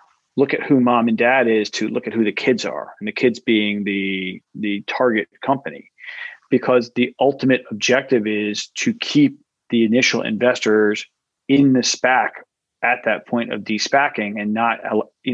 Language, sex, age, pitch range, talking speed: English, male, 40-59, 110-125 Hz, 170 wpm